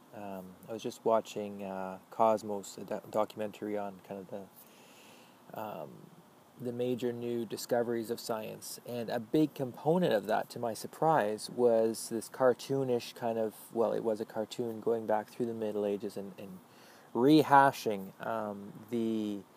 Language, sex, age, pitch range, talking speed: English, male, 20-39, 105-120 Hz, 155 wpm